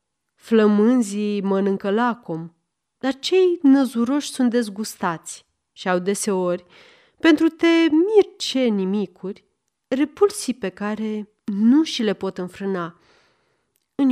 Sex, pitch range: female, 190-270 Hz